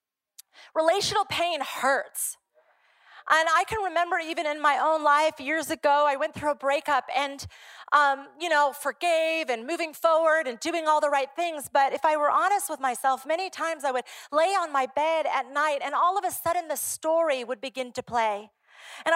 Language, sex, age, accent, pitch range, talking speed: English, female, 30-49, American, 280-345 Hz, 195 wpm